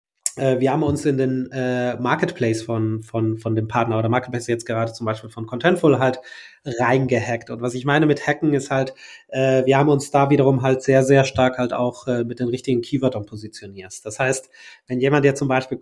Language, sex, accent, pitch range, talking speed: German, male, German, 125-145 Hz, 210 wpm